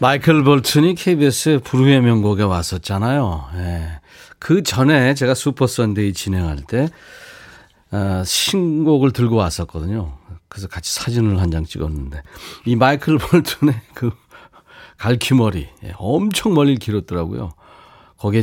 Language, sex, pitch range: Korean, male, 95-145 Hz